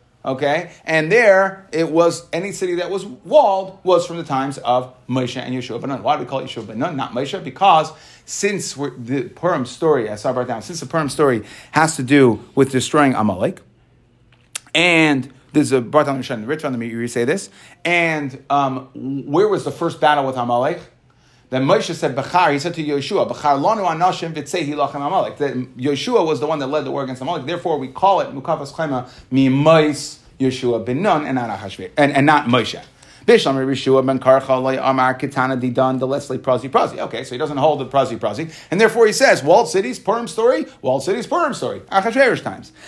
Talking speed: 205 wpm